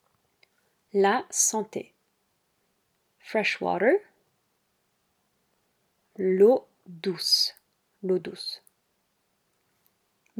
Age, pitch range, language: 30-49, 190-230 Hz, French